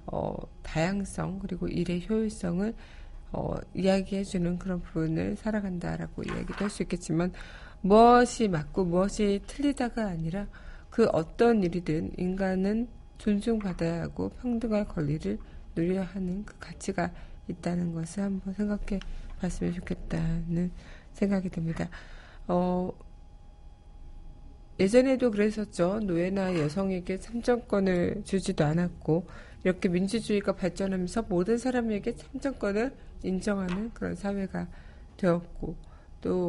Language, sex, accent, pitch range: Korean, female, native, 170-210 Hz